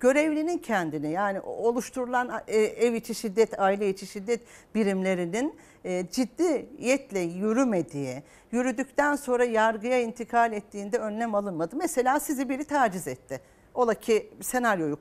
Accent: native